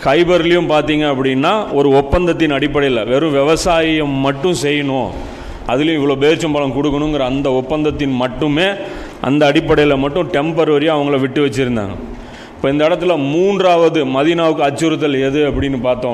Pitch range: 135-165 Hz